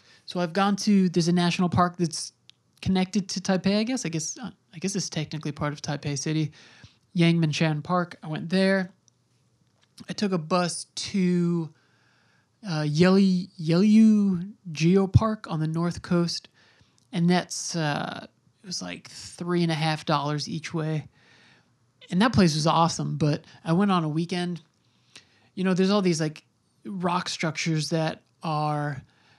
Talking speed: 155 wpm